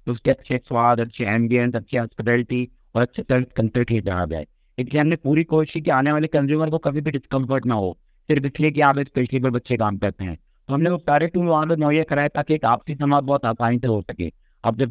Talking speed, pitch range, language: 175 wpm, 120-145 Hz, Hindi